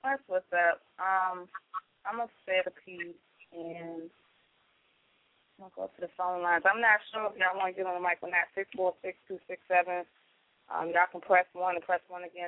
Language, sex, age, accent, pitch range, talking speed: English, female, 20-39, American, 175-195 Hz, 205 wpm